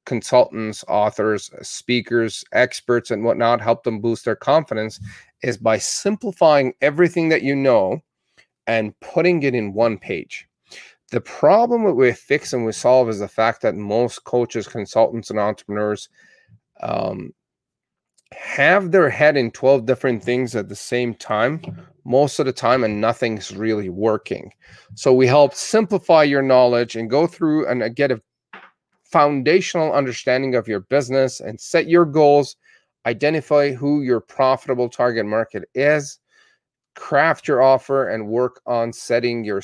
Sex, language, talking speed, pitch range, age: male, English, 145 wpm, 110-140 Hz, 30-49